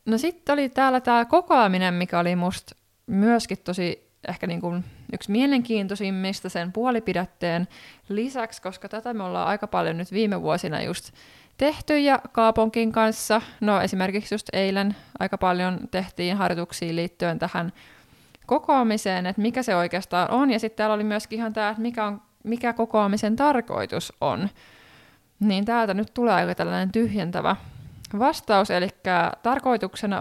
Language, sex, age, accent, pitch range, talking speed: Finnish, female, 20-39, native, 180-230 Hz, 140 wpm